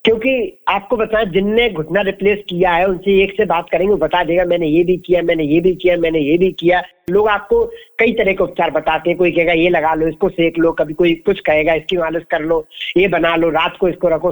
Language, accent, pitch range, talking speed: Hindi, native, 165-210 Hz, 245 wpm